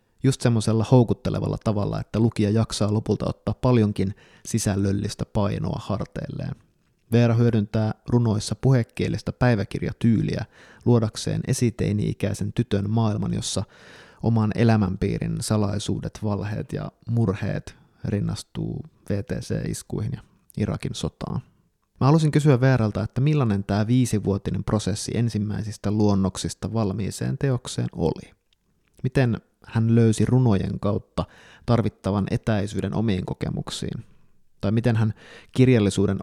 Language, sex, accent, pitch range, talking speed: Finnish, male, native, 100-120 Hz, 100 wpm